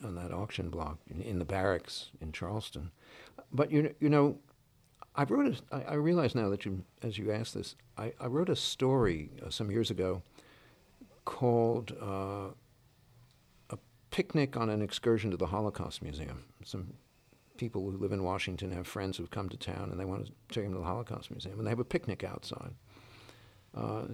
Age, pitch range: 50-69, 95-120 Hz